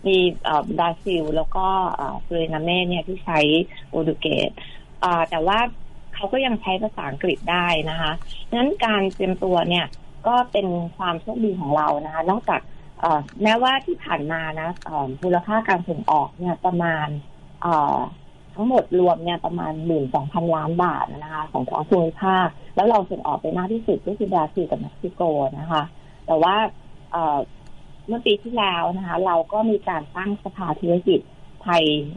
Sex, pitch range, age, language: female, 155-195 Hz, 30-49, Thai